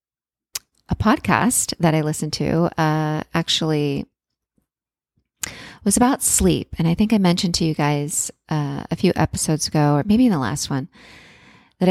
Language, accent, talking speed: English, American, 155 wpm